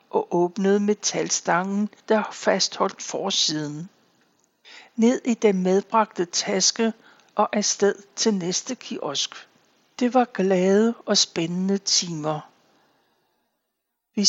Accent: native